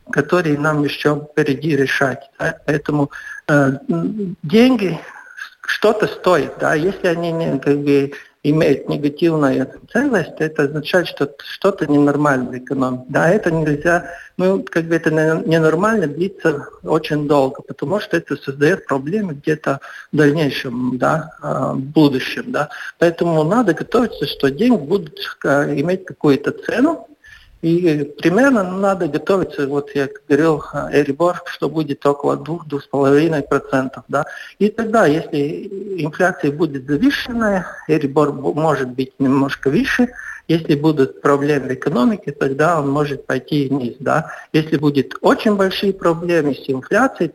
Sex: male